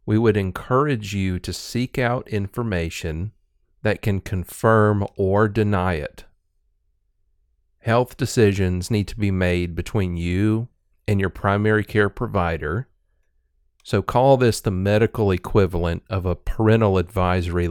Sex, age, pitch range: male, 40-59, 90-110 Hz